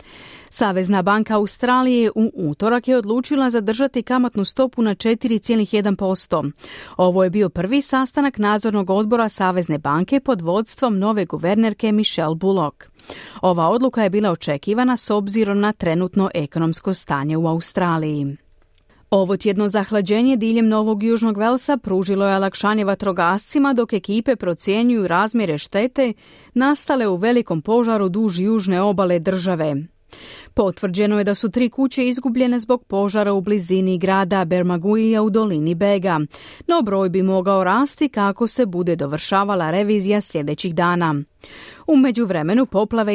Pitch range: 185-230 Hz